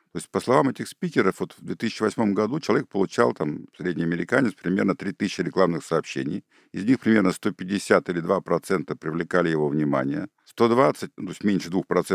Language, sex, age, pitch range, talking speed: Russian, male, 50-69, 95-125 Hz, 155 wpm